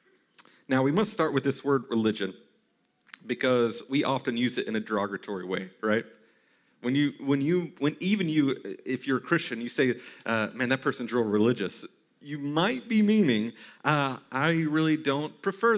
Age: 40-59